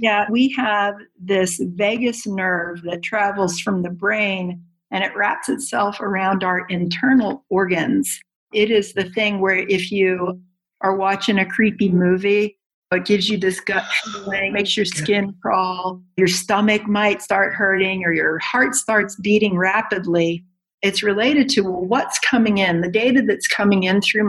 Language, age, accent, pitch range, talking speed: English, 50-69, American, 185-215 Hz, 160 wpm